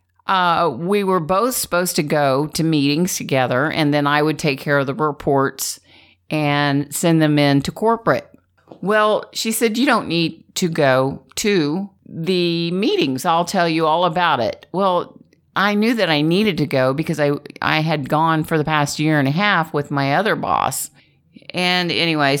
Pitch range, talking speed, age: 150-190 Hz, 180 wpm, 50-69